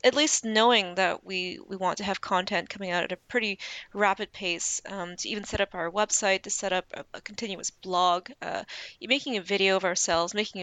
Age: 20-39